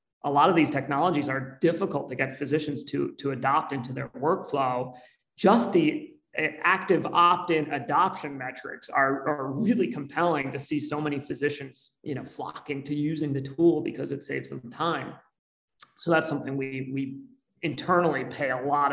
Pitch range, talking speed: 130-150 Hz, 165 wpm